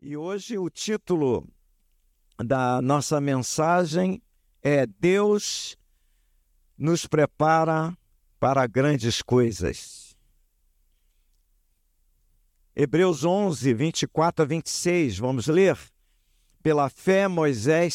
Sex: male